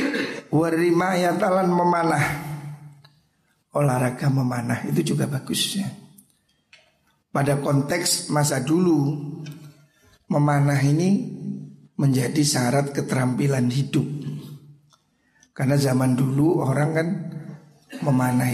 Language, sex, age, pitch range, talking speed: Indonesian, male, 60-79, 135-155 Hz, 75 wpm